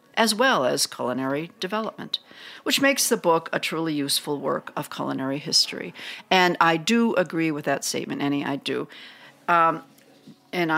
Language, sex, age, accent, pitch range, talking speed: English, female, 50-69, American, 145-210 Hz, 155 wpm